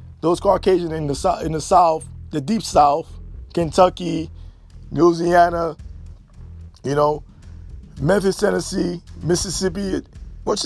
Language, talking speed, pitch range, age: English, 105 wpm, 170-260 Hz, 20-39